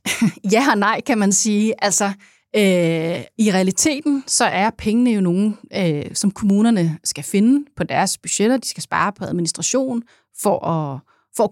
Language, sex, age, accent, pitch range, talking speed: Danish, female, 30-49, native, 180-220 Hz, 135 wpm